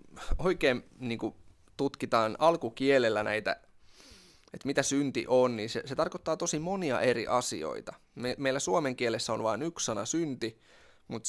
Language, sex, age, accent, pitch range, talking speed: Finnish, male, 20-39, native, 100-135 Hz, 150 wpm